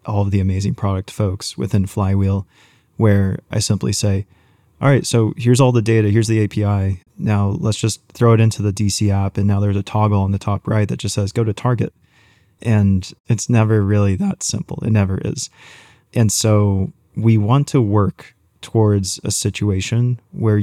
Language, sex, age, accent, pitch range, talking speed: English, male, 20-39, American, 100-110 Hz, 190 wpm